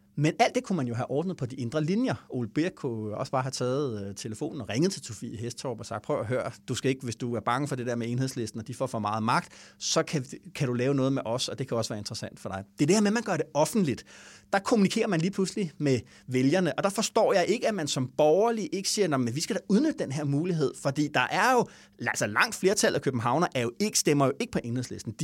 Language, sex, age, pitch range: English, male, 30-49, 125-185 Hz